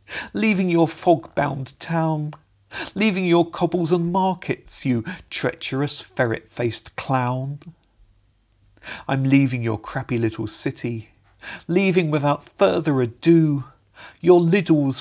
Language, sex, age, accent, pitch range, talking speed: English, male, 40-59, British, 110-160 Hz, 100 wpm